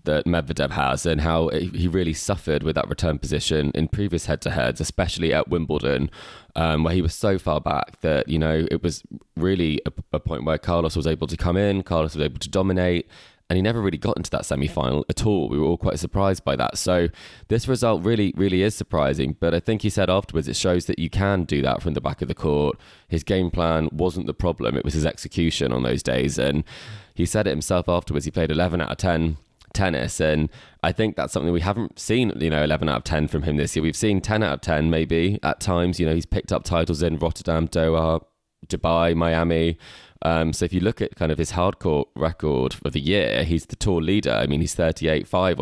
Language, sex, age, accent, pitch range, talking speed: English, male, 20-39, British, 80-95 Hz, 230 wpm